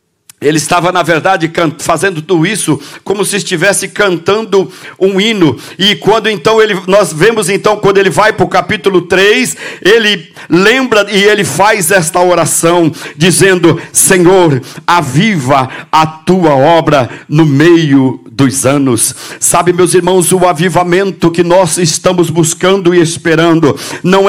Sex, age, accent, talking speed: male, 50-69, Brazilian, 140 wpm